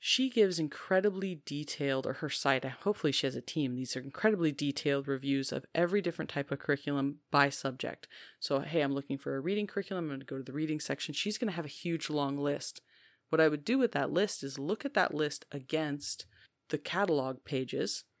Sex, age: female, 30-49